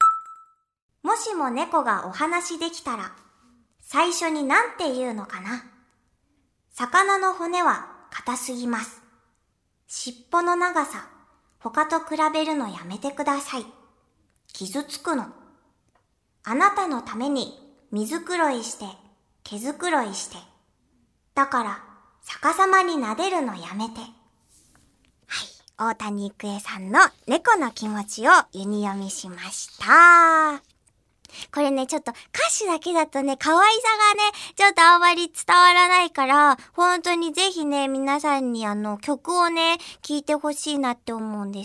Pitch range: 235-335 Hz